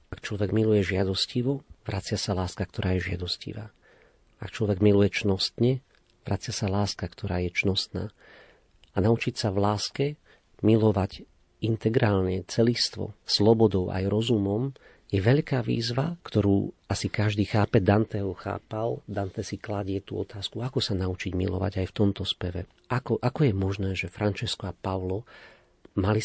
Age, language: 40-59, Slovak